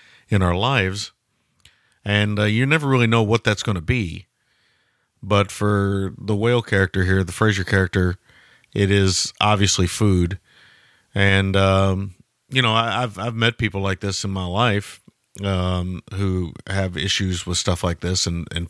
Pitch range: 90-110 Hz